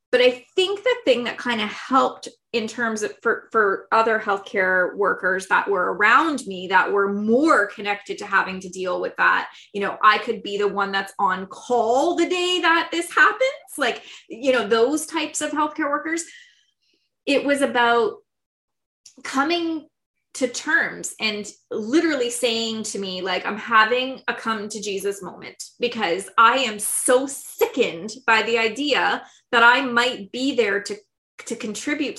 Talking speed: 165 wpm